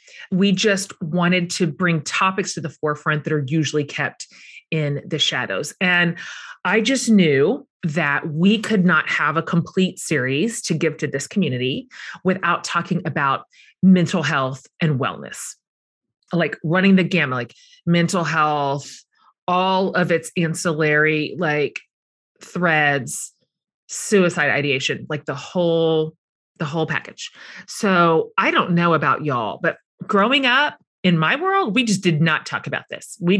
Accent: American